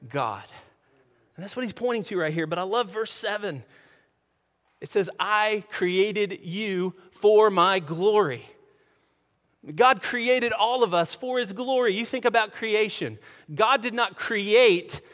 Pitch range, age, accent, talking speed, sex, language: 175-235 Hz, 30-49, American, 150 wpm, male, English